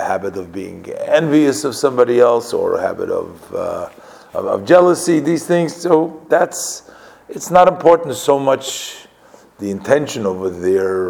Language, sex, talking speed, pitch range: English, male, 150 wpm, 100-135 Hz